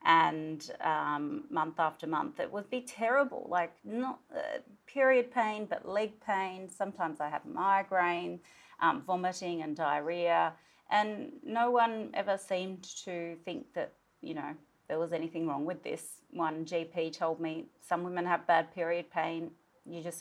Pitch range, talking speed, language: 160-195 Hz, 155 wpm, English